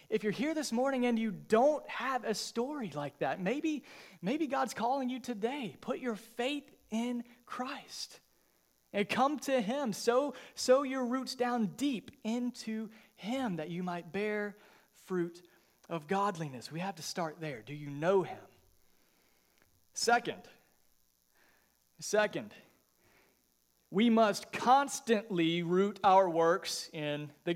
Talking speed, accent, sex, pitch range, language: 135 wpm, American, male, 180-250 Hz, English